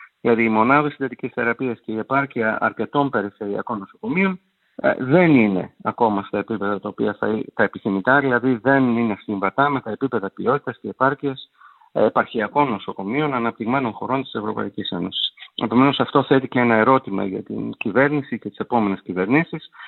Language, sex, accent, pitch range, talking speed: Greek, male, native, 105-140 Hz, 150 wpm